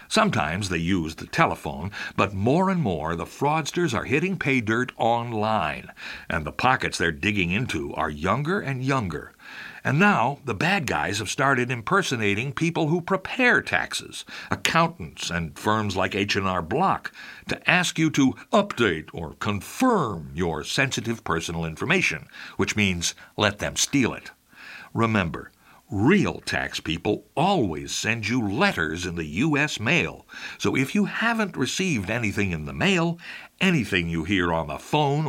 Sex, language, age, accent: male, English, 60-79, American